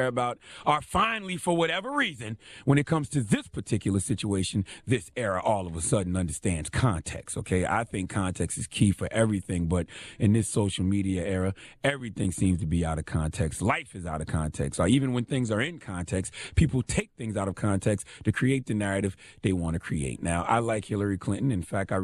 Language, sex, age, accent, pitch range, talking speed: English, male, 30-49, American, 90-115 Hz, 205 wpm